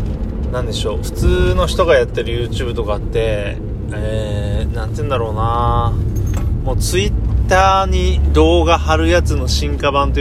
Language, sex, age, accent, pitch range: Japanese, male, 30-49, native, 80-110 Hz